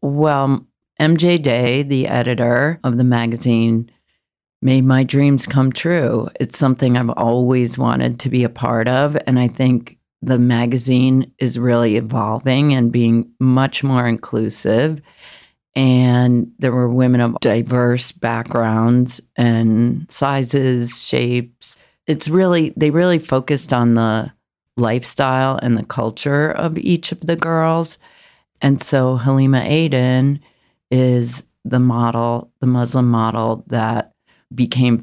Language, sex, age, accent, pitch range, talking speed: English, female, 40-59, American, 115-135 Hz, 125 wpm